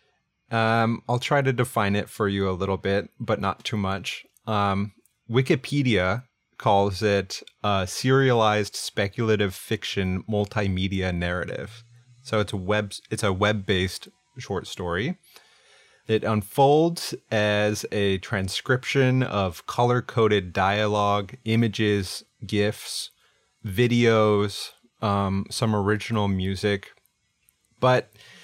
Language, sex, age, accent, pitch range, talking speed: English, male, 30-49, American, 100-120 Hz, 110 wpm